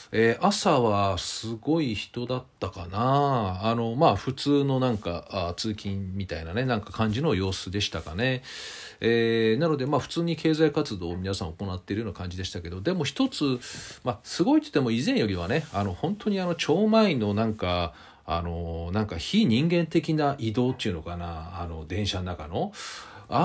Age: 40-59